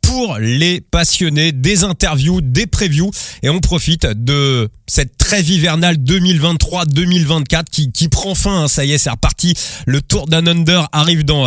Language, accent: French, French